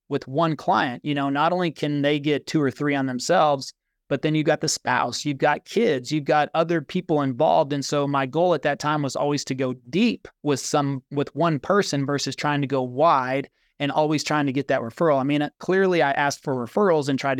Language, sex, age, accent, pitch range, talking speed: English, male, 30-49, American, 135-155 Hz, 230 wpm